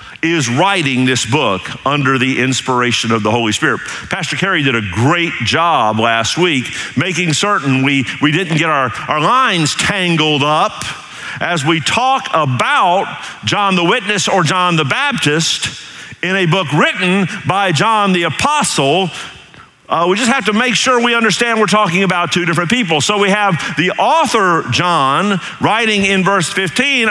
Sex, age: male, 50-69